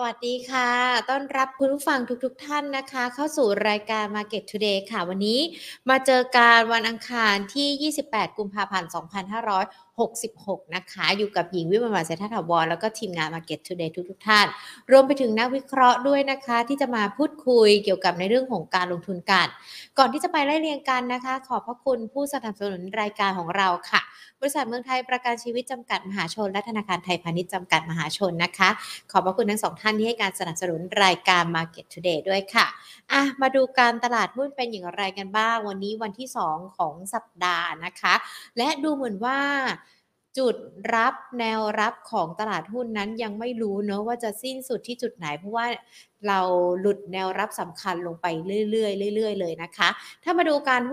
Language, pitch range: Thai, 190-250 Hz